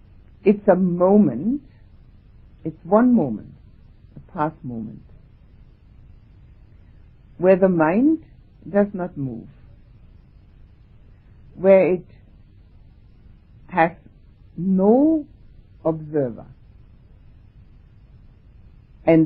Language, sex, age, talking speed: English, female, 60-79, 65 wpm